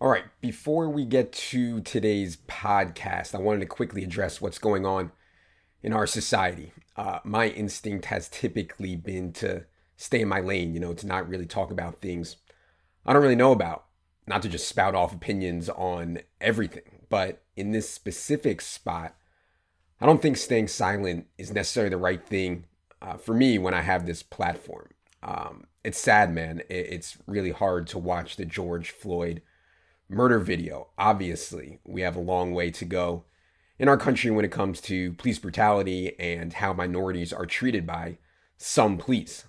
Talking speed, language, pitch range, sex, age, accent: 170 wpm, English, 85-105 Hz, male, 30-49, American